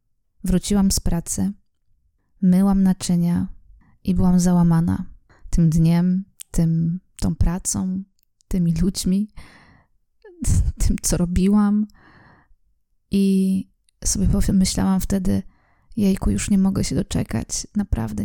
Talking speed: 100 wpm